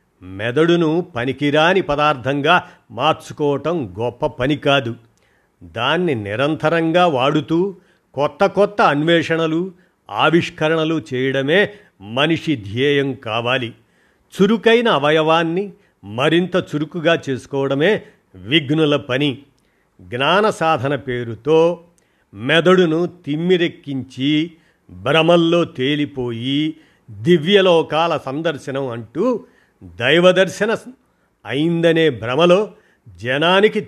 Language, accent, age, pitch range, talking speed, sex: Telugu, native, 50-69, 130-170 Hz, 70 wpm, male